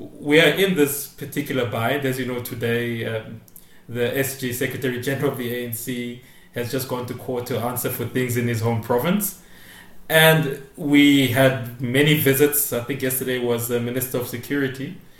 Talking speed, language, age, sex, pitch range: 175 wpm, English, 20-39, male, 120-145 Hz